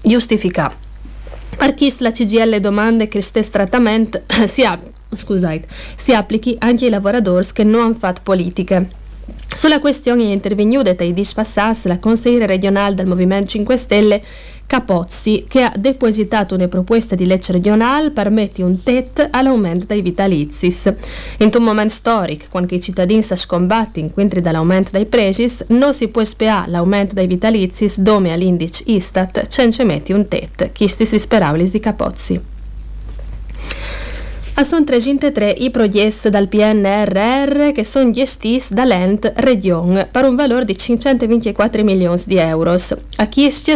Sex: female